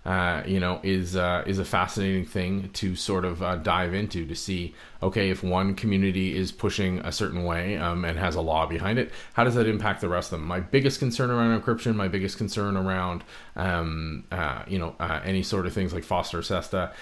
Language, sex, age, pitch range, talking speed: English, male, 30-49, 85-110 Hz, 220 wpm